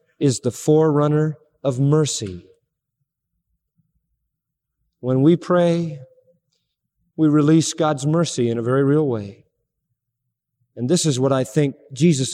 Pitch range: 135-180 Hz